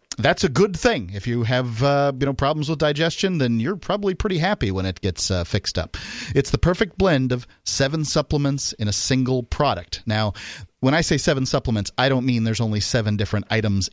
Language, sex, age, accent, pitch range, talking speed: English, male, 40-59, American, 110-150 Hz, 210 wpm